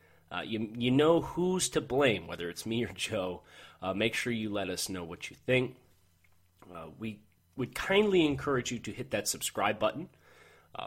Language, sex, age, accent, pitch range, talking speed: English, male, 30-49, American, 100-130 Hz, 190 wpm